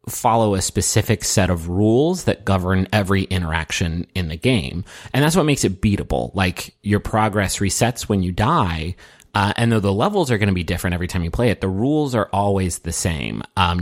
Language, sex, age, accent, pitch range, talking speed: English, male, 30-49, American, 90-110 Hz, 210 wpm